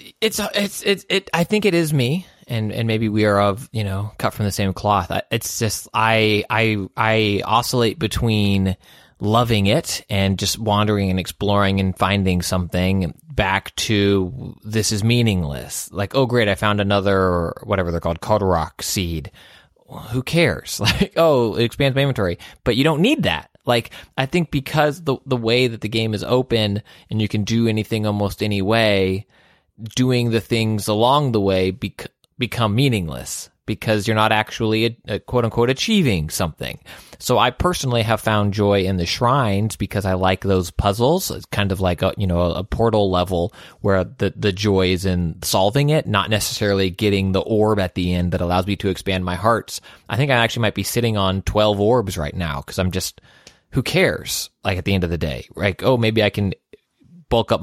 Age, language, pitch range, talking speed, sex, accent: 20-39, English, 95-115 Hz, 195 wpm, male, American